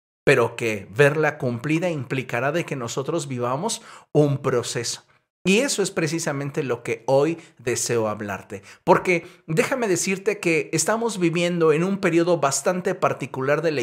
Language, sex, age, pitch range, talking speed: Spanish, male, 50-69, 130-175 Hz, 145 wpm